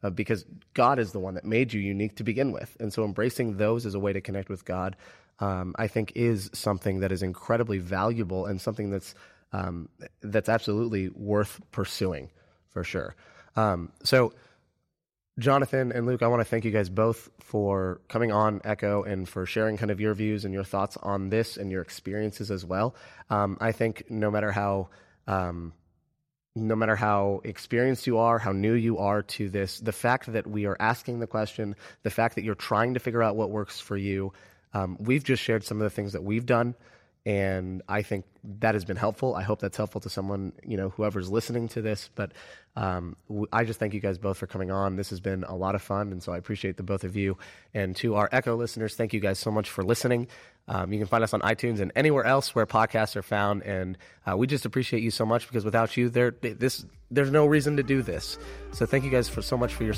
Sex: male